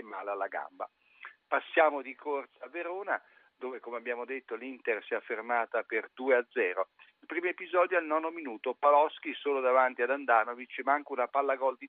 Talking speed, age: 175 wpm, 50-69